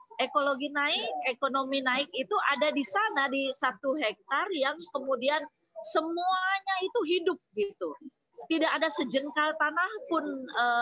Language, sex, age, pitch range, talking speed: Indonesian, female, 20-39, 235-320 Hz, 130 wpm